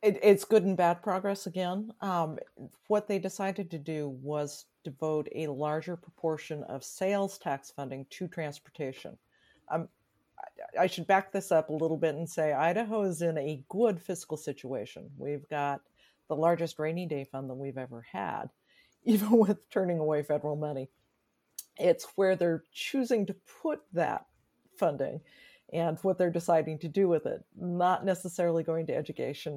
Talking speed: 160 wpm